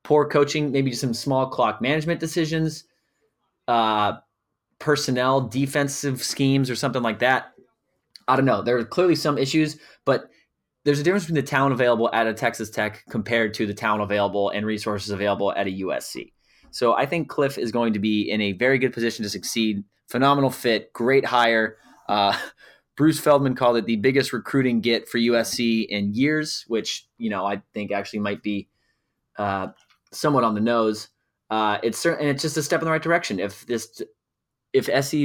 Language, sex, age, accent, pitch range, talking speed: English, male, 20-39, American, 110-145 Hz, 185 wpm